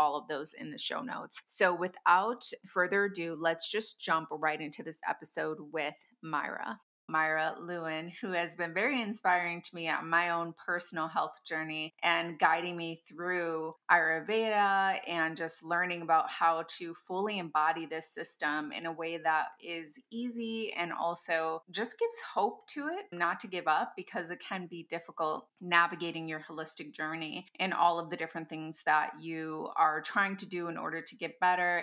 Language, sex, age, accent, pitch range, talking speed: English, female, 20-39, American, 160-185 Hz, 175 wpm